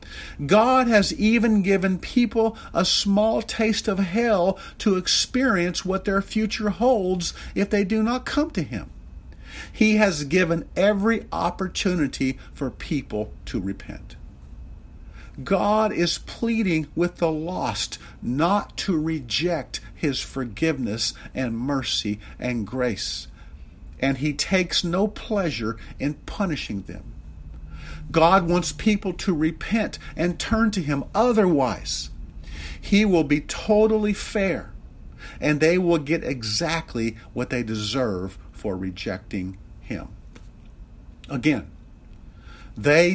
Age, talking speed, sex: 50-69, 115 wpm, male